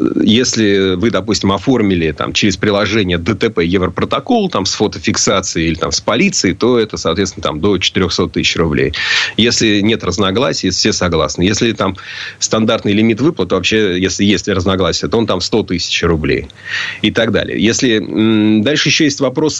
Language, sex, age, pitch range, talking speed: Russian, male, 30-49, 95-115 Hz, 145 wpm